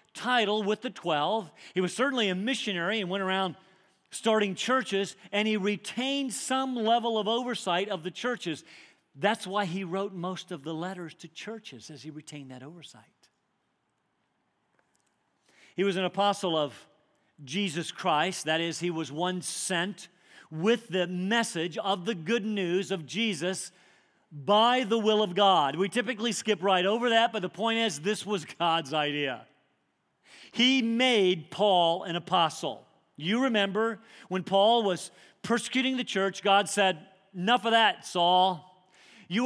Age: 50-69